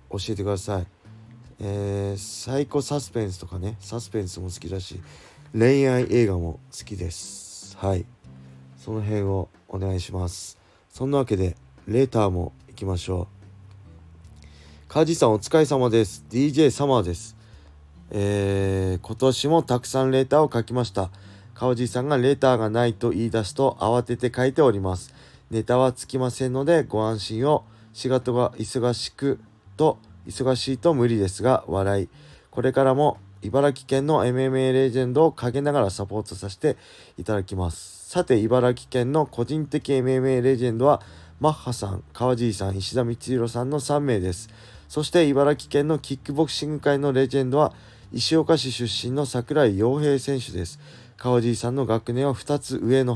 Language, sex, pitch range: Japanese, male, 100-130 Hz